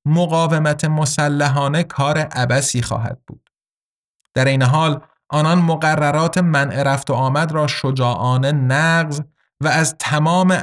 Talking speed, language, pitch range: 120 wpm, Persian, 130-160 Hz